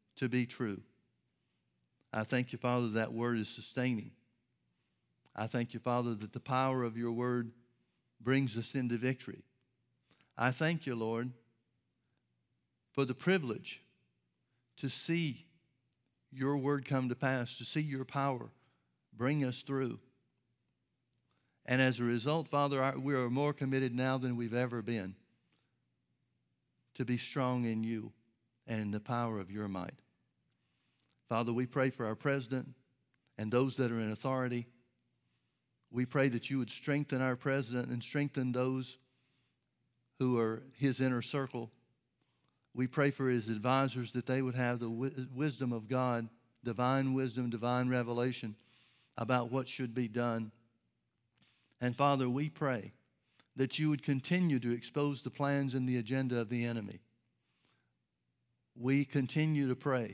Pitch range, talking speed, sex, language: 115-130 Hz, 145 wpm, male, English